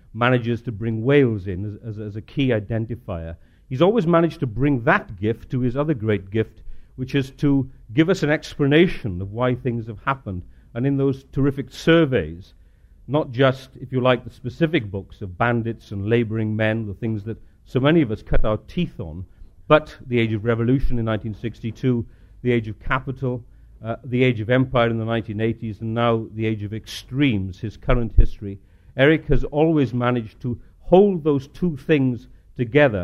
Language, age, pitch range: English, 50-69, 105-135 Hz